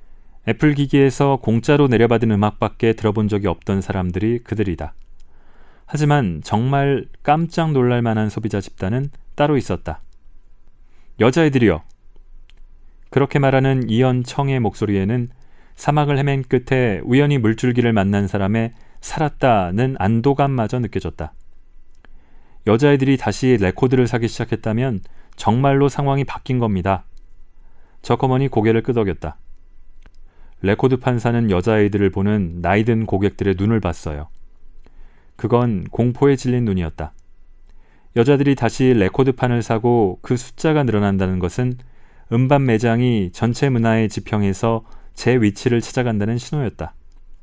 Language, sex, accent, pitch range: Korean, male, native, 90-125 Hz